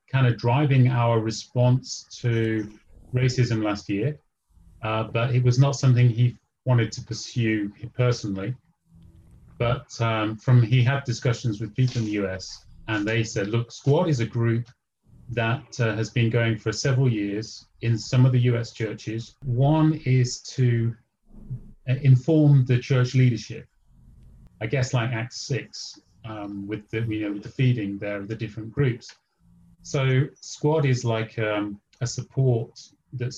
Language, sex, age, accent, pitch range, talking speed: English, male, 30-49, British, 110-130 Hz, 155 wpm